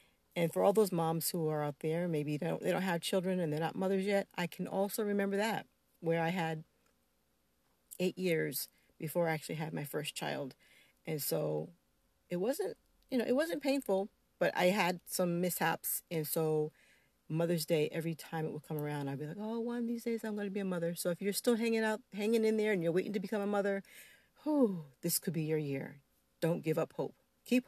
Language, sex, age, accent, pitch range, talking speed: English, female, 40-59, American, 140-200 Hz, 220 wpm